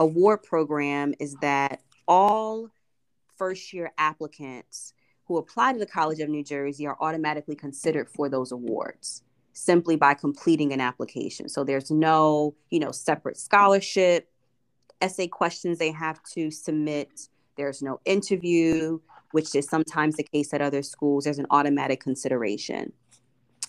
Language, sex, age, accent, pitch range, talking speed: English, female, 20-39, American, 140-160 Hz, 140 wpm